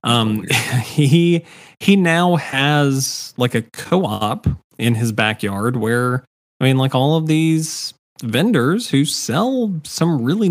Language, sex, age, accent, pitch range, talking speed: English, male, 20-39, American, 110-140 Hz, 130 wpm